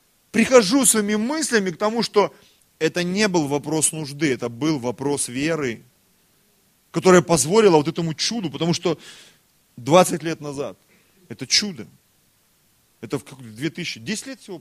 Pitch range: 115-160 Hz